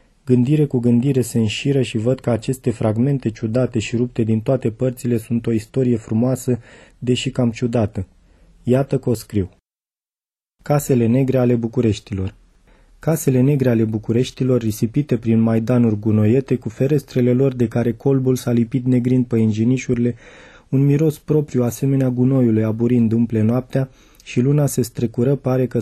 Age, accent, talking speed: 30-49, native, 150 wpm